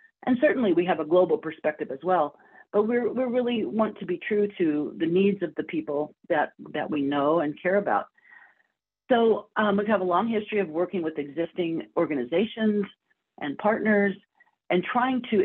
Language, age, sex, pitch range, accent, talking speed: English, 50-69, female, 150-215 Hz, American, 180 wpm